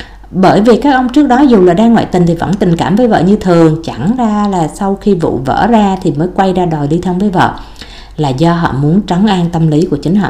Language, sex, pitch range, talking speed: Vietnamese, female, 150-200 Hz, 275 wpm